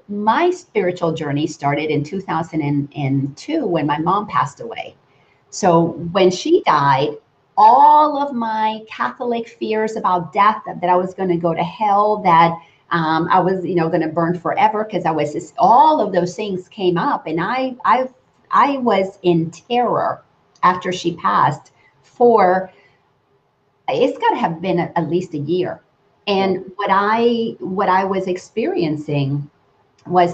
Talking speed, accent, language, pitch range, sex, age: 150 wpm, American, English, 165-210 Hz, female, 40-59